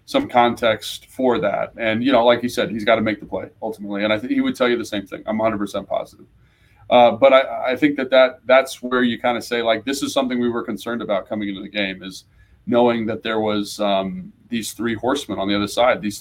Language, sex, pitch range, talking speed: English, male, 105-125 Hz, 255 wpm